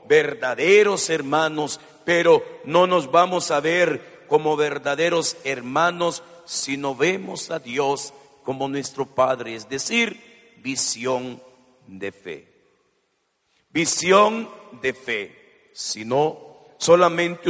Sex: male